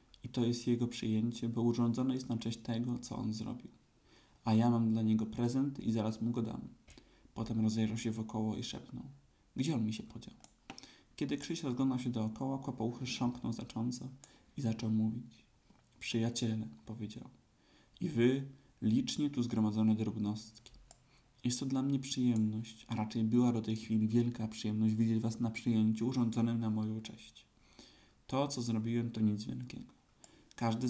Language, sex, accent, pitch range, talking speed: Polish, male, native, 110-120 Hz, 165 wpm